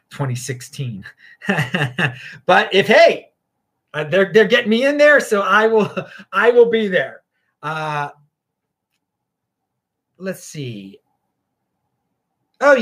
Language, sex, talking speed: English, male, 100 wpm